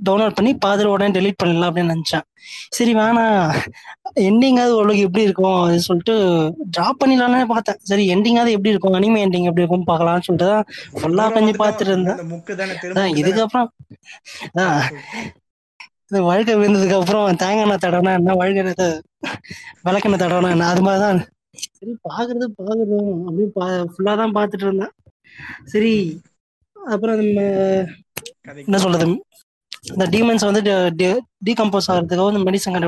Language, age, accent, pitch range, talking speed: Tamil, 20-39, native, 180-210 Hz, 65 wpm